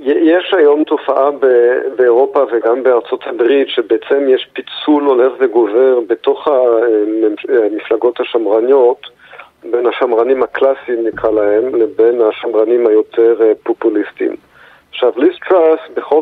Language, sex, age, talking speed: Hebrew, male, 50-69, 100 wpm